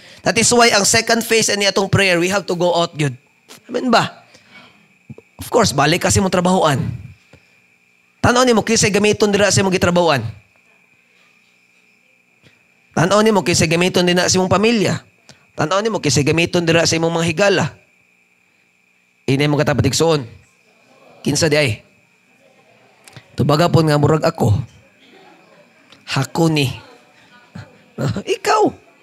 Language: Filipino